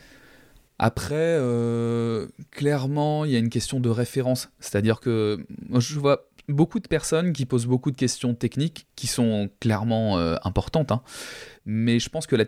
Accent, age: French, 20-39